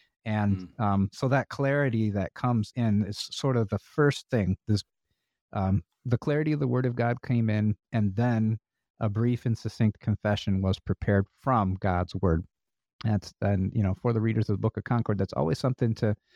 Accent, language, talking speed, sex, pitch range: American, English, 195 wpm, male, 100-120 Hz